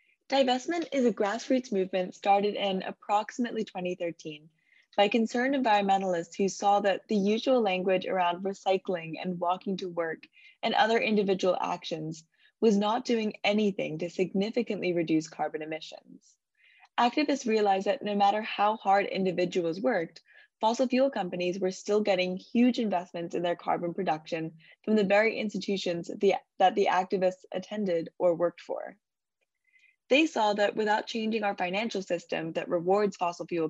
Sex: female